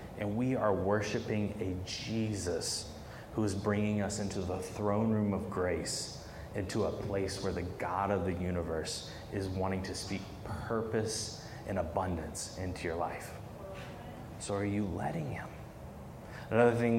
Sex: male